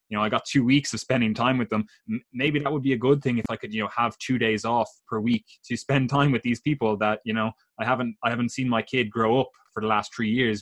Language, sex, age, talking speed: English, male, 20-39, 295 wpm